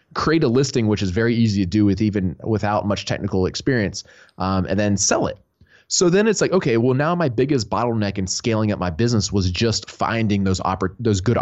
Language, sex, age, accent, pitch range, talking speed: English, male, 20-39, American, 95-120 Hz, 220 wpm